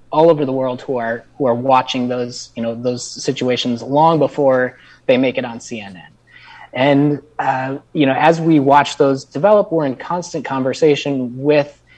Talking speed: 175 wpm